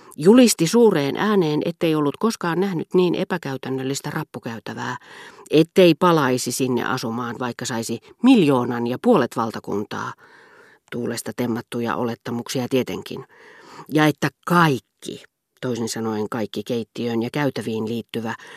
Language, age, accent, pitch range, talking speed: Finnish, 40-59, native, 120-180 Hz, 110 wpm